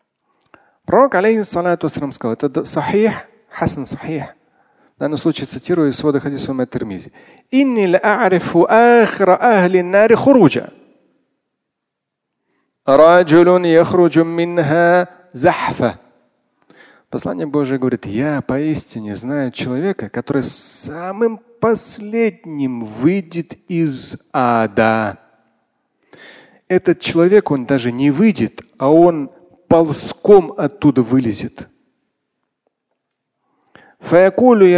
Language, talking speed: Russian, 55 wpm